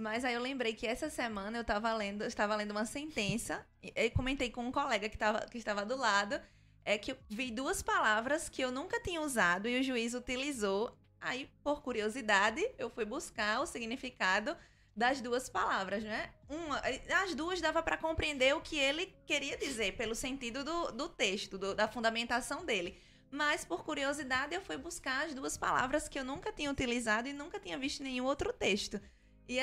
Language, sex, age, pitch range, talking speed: Portuguese, female, 20-39, 220-285 Hz, 190 wpm